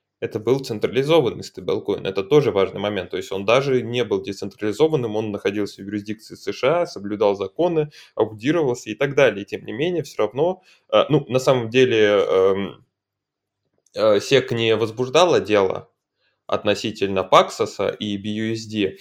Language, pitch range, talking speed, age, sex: Russian, 105-165 Hz, 140 wpm, 20-39, male